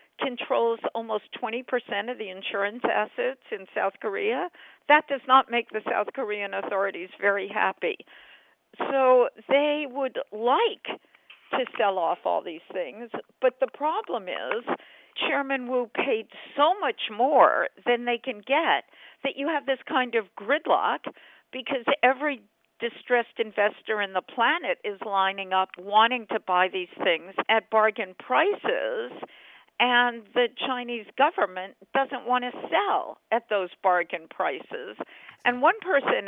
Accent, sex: American, female